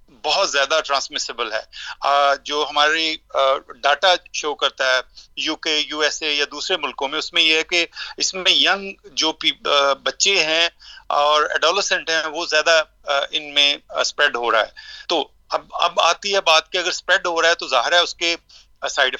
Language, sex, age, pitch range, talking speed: Urdu, male, 40-59, 145-180 Hz, 185 wpm